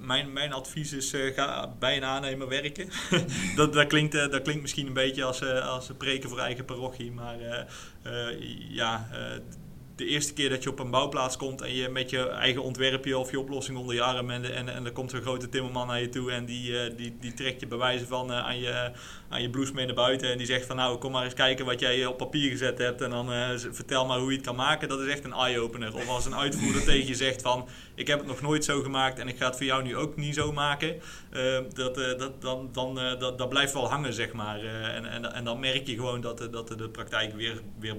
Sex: male